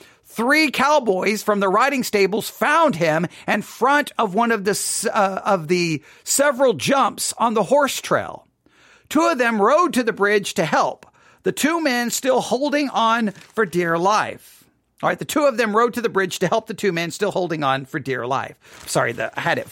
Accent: American